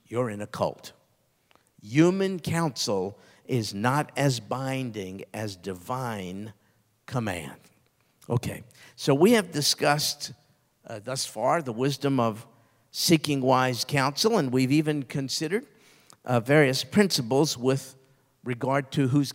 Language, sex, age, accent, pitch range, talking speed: English, male, 50-69, American, 125-165 Hz, 120 wpm